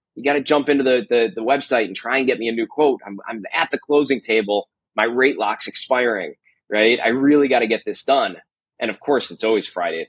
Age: 20-39